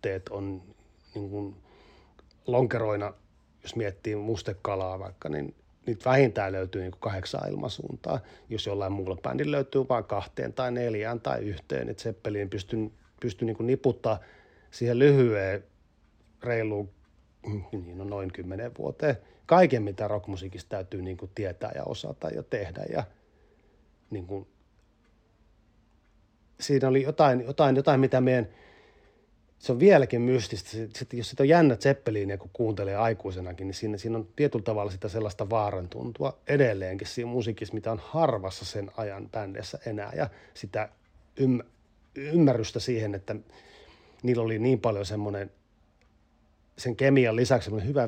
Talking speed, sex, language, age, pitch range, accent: 125 wpm, male, Finnish, 30-49, 95-120 Hz, native